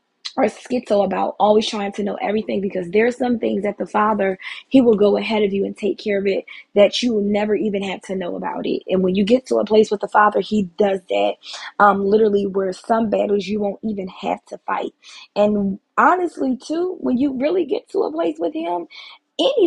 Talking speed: 225 wpm